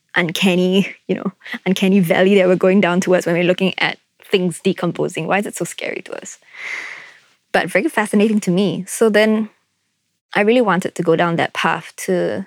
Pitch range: 175-210 Hz